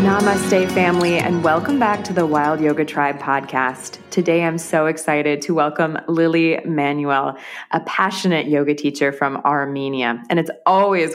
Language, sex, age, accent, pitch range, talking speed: English, female, 20-39, American, 145-175 Hz, 150 wpm